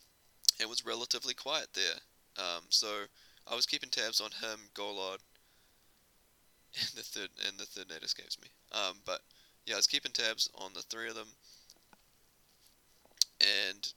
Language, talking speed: English, 145 wpm